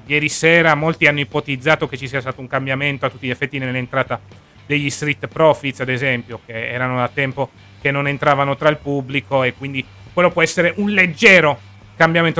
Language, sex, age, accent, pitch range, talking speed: Italian, male, 30-49, native, 130-170 Hz, 190 wpm